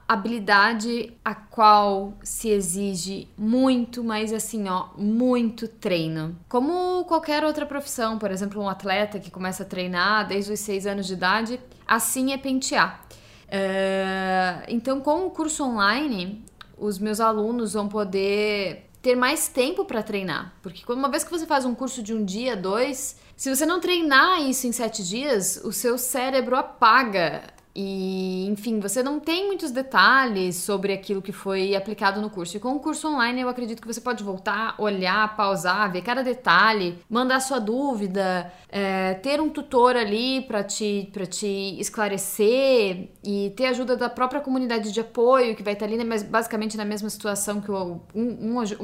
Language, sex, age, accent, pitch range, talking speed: Portuguese, female, 10-29, Brazilian, 200-265 Hz, 170 wpm